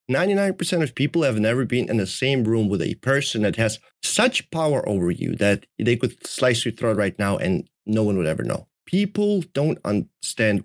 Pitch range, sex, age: 100-130 Hz, male, 30-49